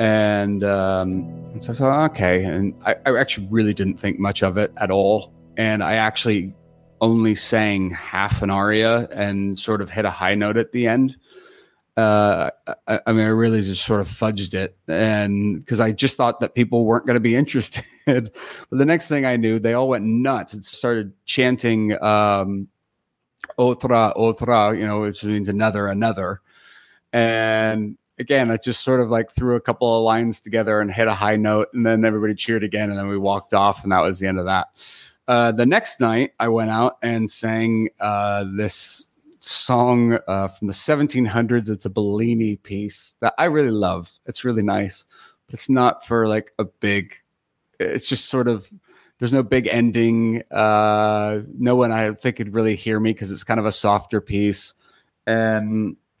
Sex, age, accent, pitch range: male, 30-49, American, 100-115 Hz